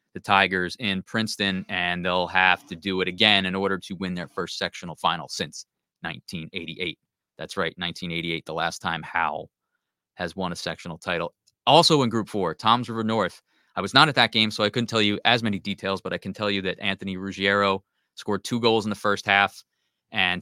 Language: English